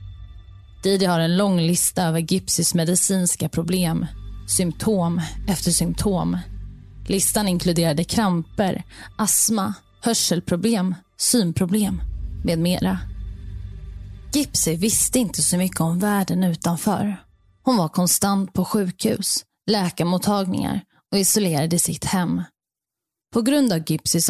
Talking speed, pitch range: 105 wpm, 165-195 Hz